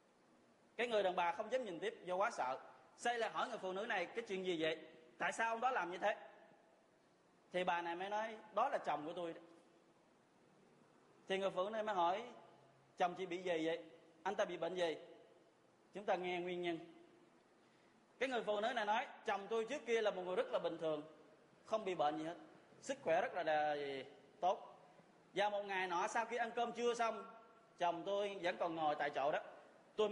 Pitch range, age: 175-225 Hz, 20-39